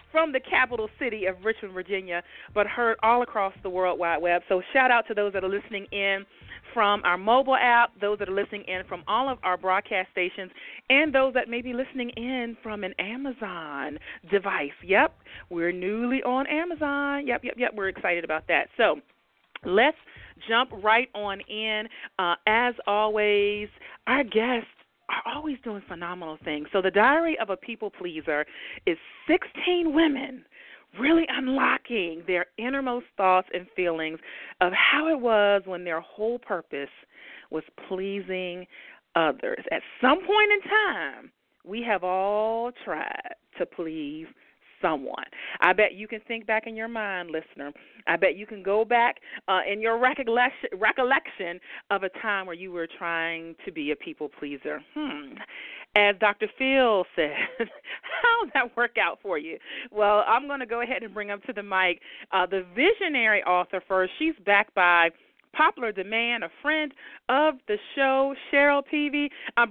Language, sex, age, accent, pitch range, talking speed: English, female, 40-59, American, 190-260 Hz, 165 wpm